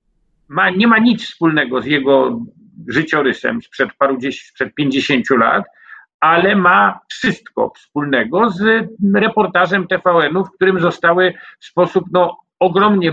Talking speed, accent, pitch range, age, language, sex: 130 wpm, native, 155-195 Hz, 50-69, Polish, male